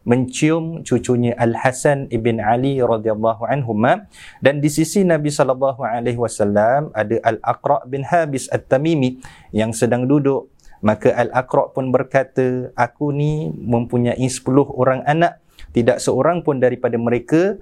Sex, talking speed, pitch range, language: male, 125 wpm, 115-150 Hz, Malay